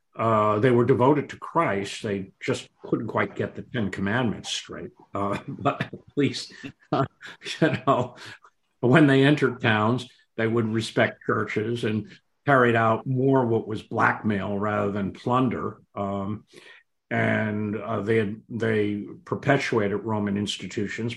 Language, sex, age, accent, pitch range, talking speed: English, male, 50-69, American, 100-120 Hz, 140 wpm